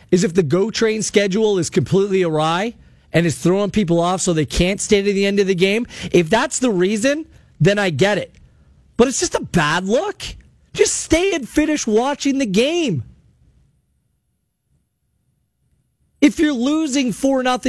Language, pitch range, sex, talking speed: English, 165-235 Hz, male, 165 wpm